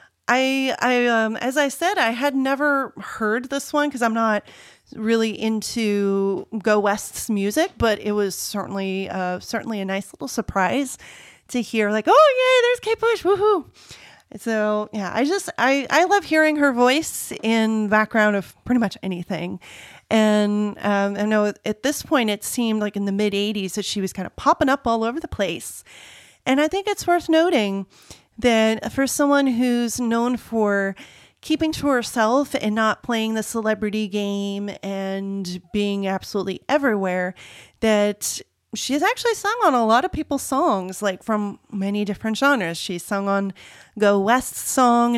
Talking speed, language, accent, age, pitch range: 165 wpm, English, American, 30-49, 200-270 Hz